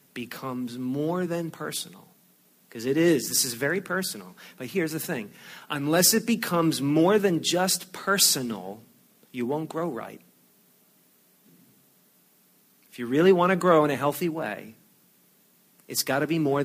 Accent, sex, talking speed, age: American, male, 150 wpm, 40-59